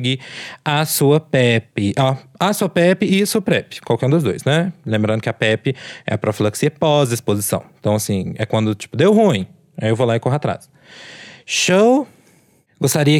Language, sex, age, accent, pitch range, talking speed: Portuguese, male, 20-39, Brazilian, 130-170 Hz, 180 wpm